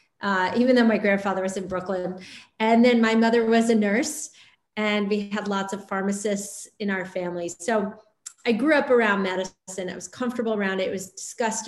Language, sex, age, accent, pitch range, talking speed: English, female, 30-49, American, 180-220 Hz, 195 wpm